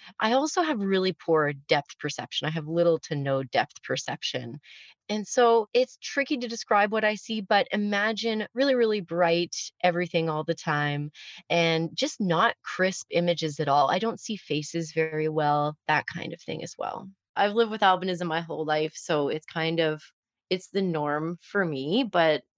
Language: English